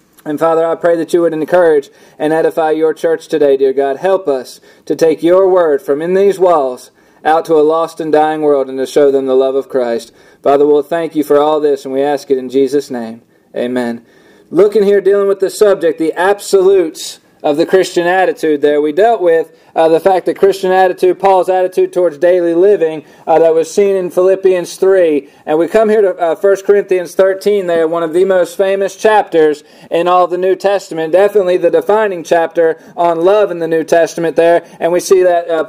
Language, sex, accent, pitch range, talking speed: English, male, American, 160-195 Hz, 210 wpm